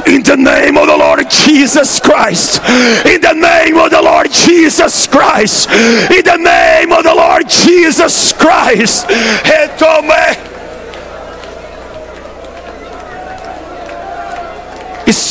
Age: 40-59